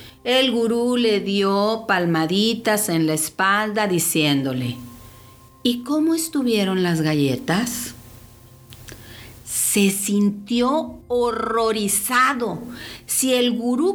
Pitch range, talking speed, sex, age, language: 155-255 Hz, 85 wpm, female, 50-69, English